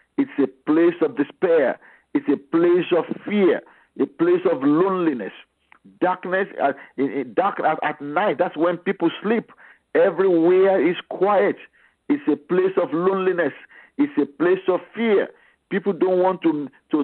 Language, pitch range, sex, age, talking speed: English, 140-195 Hz, male, 50-69, 145 wpm